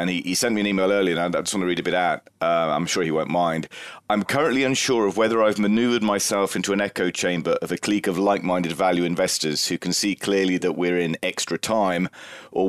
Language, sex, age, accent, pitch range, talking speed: English, male, 30-49, British, 90-105 Hz, 245 wpm